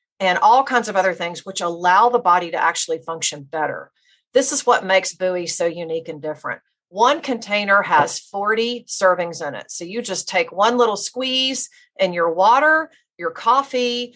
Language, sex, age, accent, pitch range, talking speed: English, female, 40-59, American, 180-235 Hz, 180 wpm